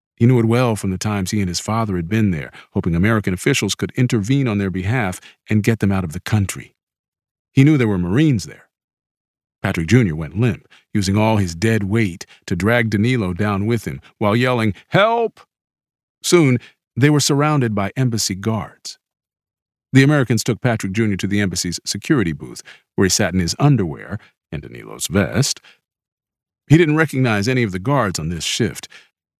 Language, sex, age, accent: English, male, 50-69, American